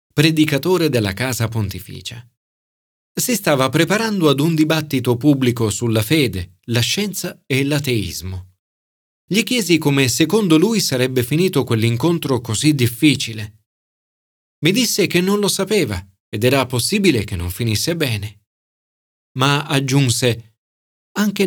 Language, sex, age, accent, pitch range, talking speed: Italian, male, 40-59, native, 115-175 Hz, 120 wpm